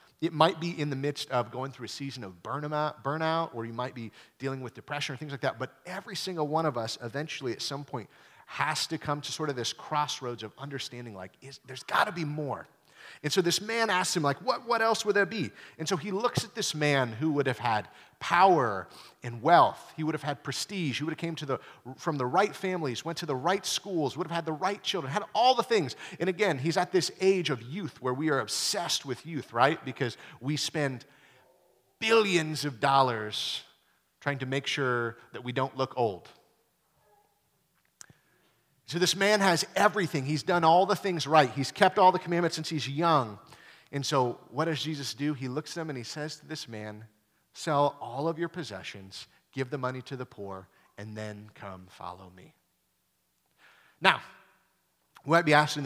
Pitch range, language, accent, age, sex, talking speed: 130-170 Hz, English, American, 30-49, male, 205 wpm